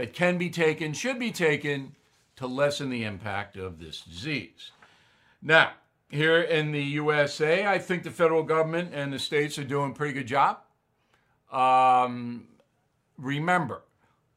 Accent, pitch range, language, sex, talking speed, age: American, 125-155 Hz, English, male, 145 wpm, 60-79